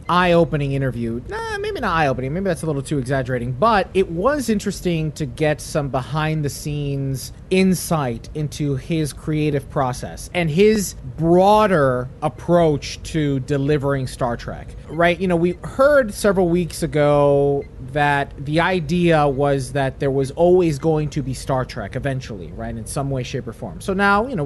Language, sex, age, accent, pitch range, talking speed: English, male, 30-49, American, 135-175 Hz, 160 wpm